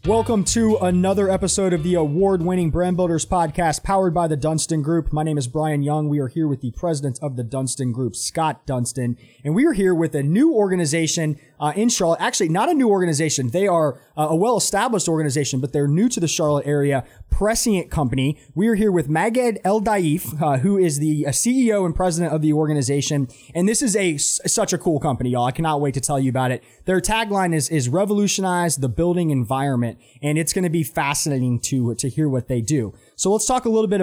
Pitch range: 140-185 Hz